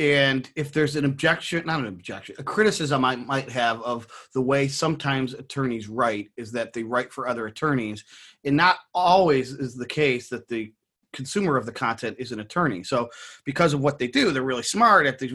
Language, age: English, 30-49